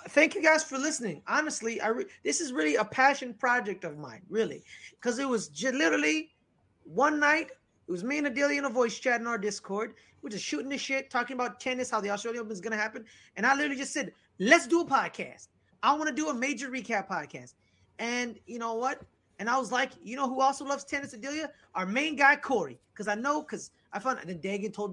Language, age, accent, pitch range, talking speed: English, 30-49, American, 215-275 Hz, 235 wpm